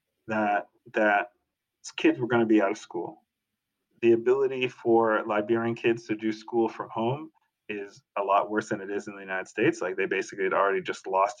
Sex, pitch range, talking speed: male, 110-145 Hz, 195 wpm